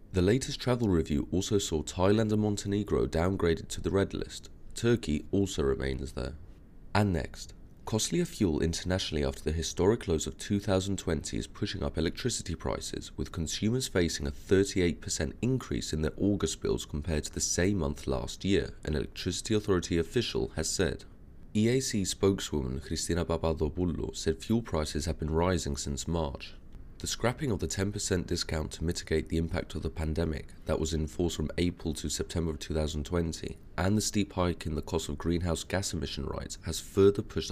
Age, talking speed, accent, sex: 30-49, 170 wpm, British, male